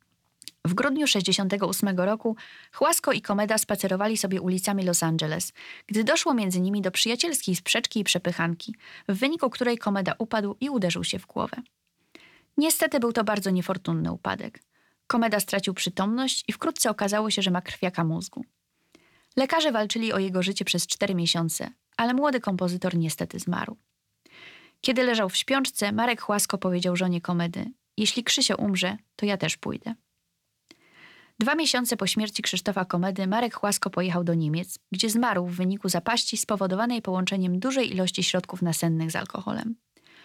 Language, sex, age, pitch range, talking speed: Polish, female, 20-39, 180-235 Hz, 150 wpm